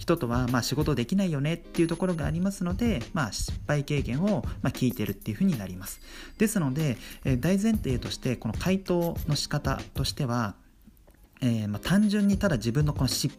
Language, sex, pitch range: Japanese, male, 115-180 Hz